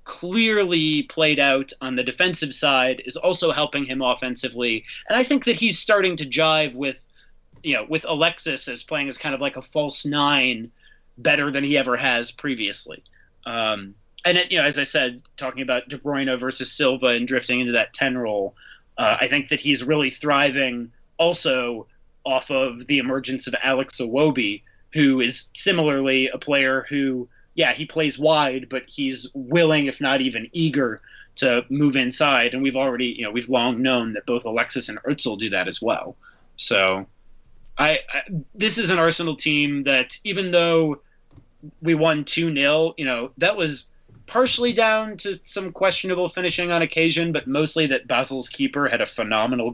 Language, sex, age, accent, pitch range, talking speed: English, male, 30-49, American, 130-160 Hz, 175 wpm